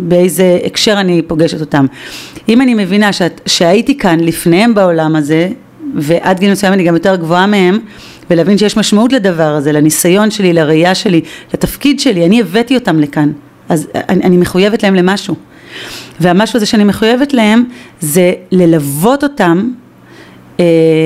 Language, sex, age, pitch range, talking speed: Hebrew, female, 30-49, 165-225 Hz, 150 wpm